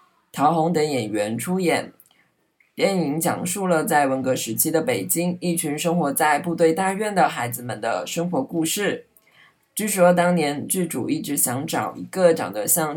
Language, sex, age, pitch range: Chinese, female, 20-39, 145-185 Hz